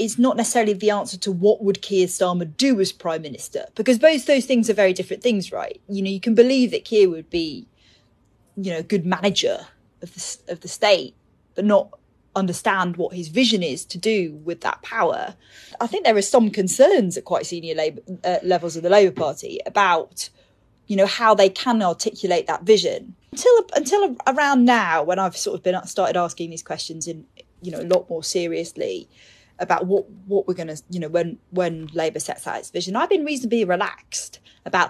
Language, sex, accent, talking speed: English, female, British, 205 wpm